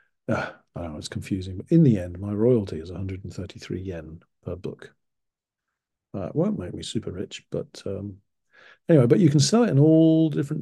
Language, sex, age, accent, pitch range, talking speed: English, male, 50-69, British, 100-135 Hz, 180 wpm